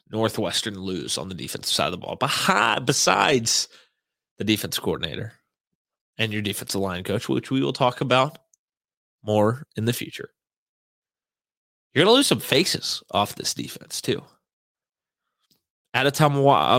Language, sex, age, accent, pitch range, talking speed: English, male, 20-39, American, 105-135 Hz, 135 wpm